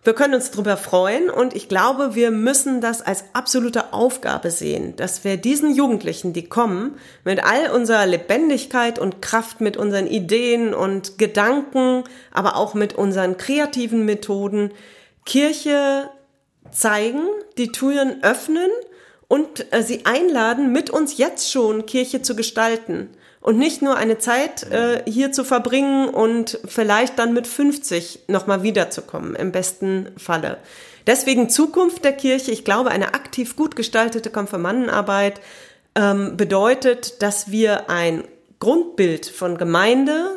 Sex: female